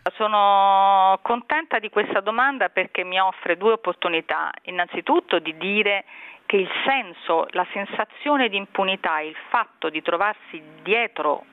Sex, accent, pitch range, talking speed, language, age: female, native, 170-220 Hz, 130 wpm, Italian, 40-59